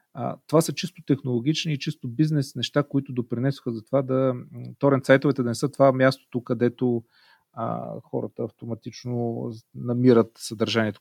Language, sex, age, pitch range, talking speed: Bulgarian, male, 40-59, 110-130 Hz, 135 wpm